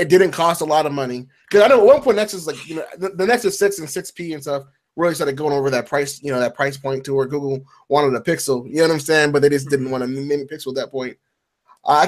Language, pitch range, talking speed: English, 135-175 Hz, 295 wpm